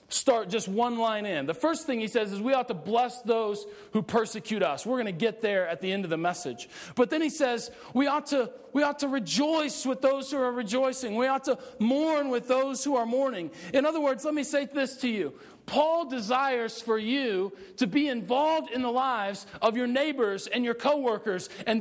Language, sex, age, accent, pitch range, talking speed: English, male, 40-59, American, 225-280 Hz, 225 wpm